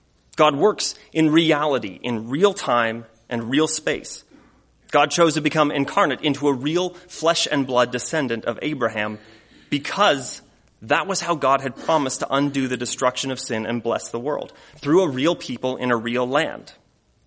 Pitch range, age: 115-150 Hz, 30-49